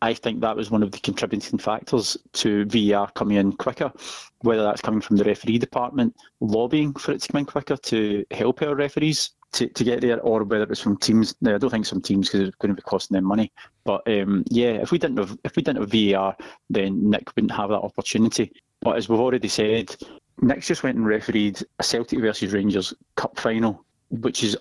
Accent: British